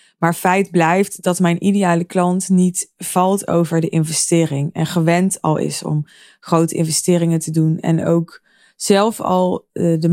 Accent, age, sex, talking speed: Dutch, 20-39, female, 155 wpm